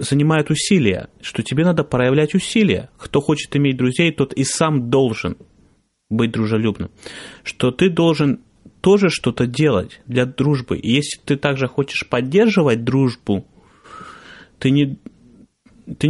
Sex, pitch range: male, 115-150 Hz